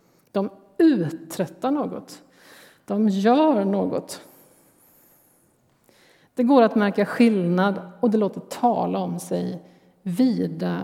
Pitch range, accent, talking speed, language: 180-235 Hz, native, 100 wpm, Swedish